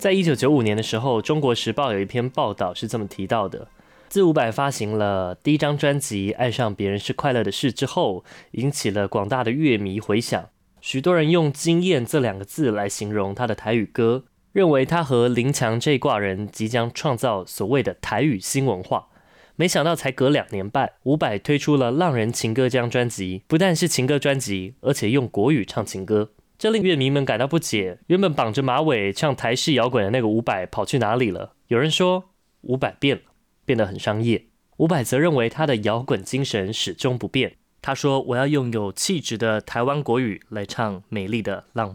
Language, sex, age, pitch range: Chinese, male, 20-39, 105-140 Hz